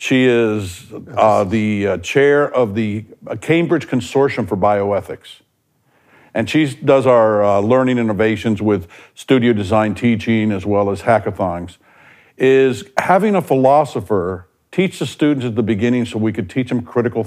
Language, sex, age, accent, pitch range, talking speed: English, male, 60-79, American, 110-145 Hz, 150 wpm